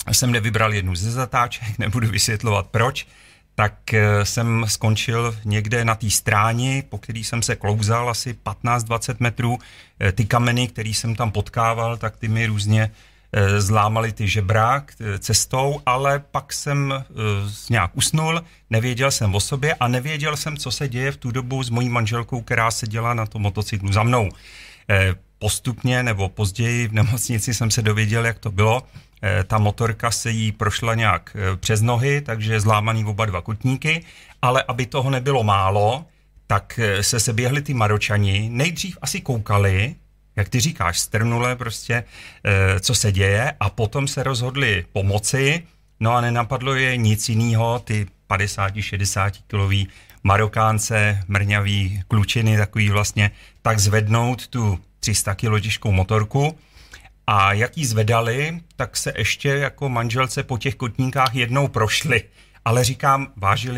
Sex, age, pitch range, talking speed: male, 40-59, 105-125 Hz, 150 wpm